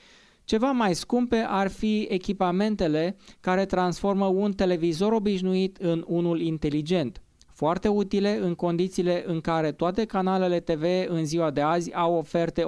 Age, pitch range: 20-39, 155-190 Hz